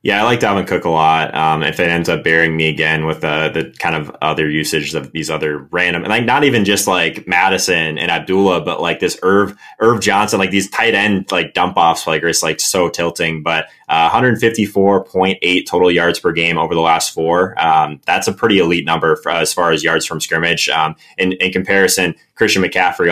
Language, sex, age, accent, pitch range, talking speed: English, male, 20-39, American, 80-95 Hz, 215 wpm